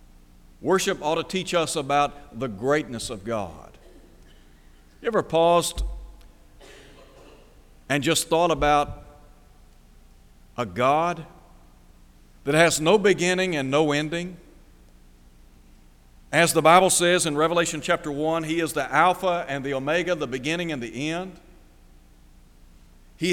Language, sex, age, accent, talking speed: English, male, 60-79, American, 120 wpm